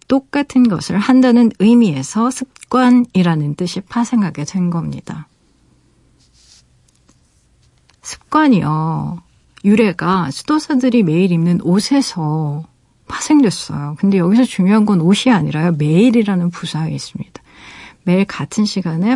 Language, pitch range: Korean, 170-245 Hz